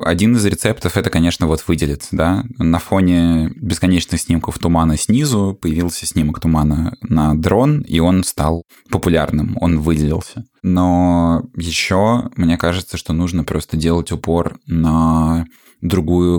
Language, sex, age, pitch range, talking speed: Russian, male, 20-39, 80-90 Hz, 135 wpm